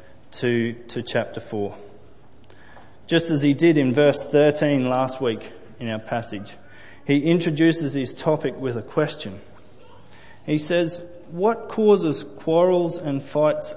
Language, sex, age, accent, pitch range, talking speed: English, male, 30-49, Australian, 120-155 Hz, 130 wpm